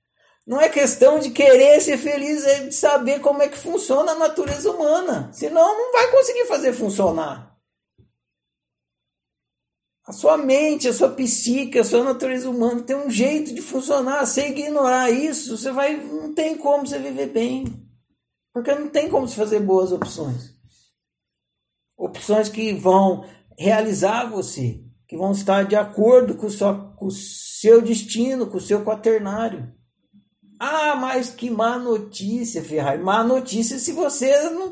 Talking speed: 150 wpm